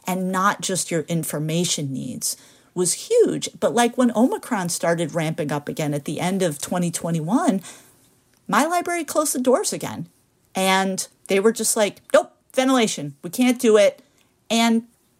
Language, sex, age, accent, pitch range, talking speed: English, female, 50-69, American, 170-250 Hz, 155 wpm